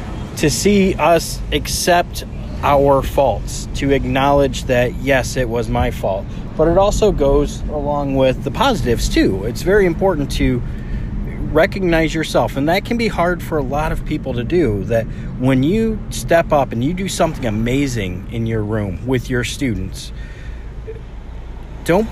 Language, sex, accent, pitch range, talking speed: English, male, American, 115-150 Hz, 155 wpm